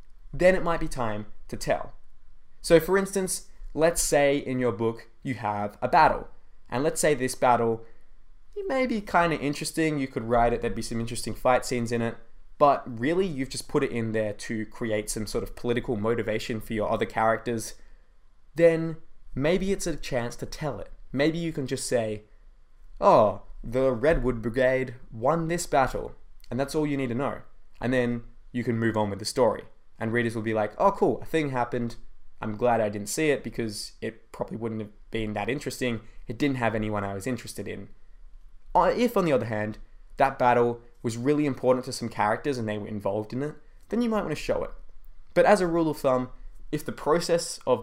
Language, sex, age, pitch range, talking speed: English, male, 20-39, 115-145 Hz, 205 wpm